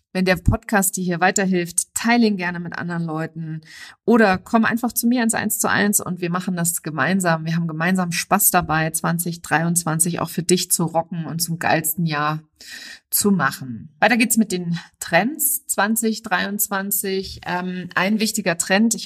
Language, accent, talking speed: German, German, 170 wpm